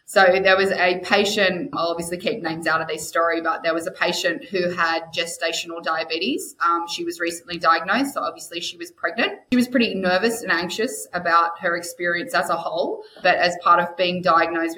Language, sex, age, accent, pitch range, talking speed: English, female, 20-39, Australian, 165-185 Hz, 205 wpm